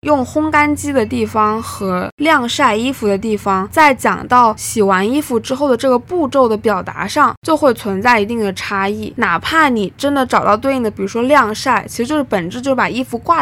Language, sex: Chinese, female